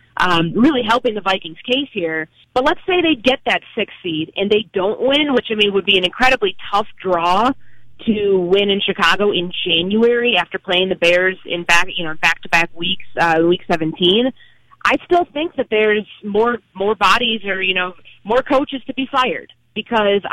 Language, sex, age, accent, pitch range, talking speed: English, female, 30-49, American, 180-230 Hz, 190 wpm